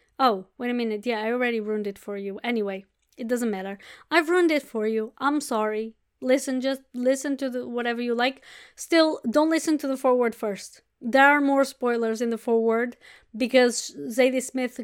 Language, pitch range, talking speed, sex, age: English, 230-285 Hz, 185 wpm, female, 20-39